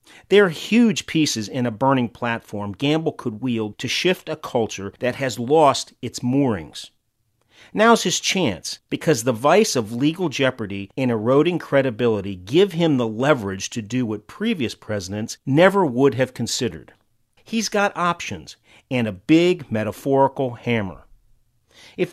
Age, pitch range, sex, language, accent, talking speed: 40-59, 115-160 Hz, male, English, American, 145 wpm